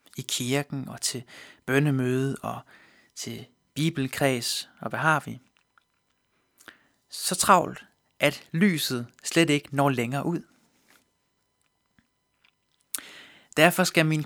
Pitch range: 135-175 Hz